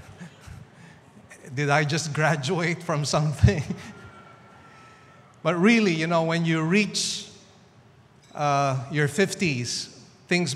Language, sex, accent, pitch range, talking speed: English, male, Filipino, 135-160 Hz, 95 wpm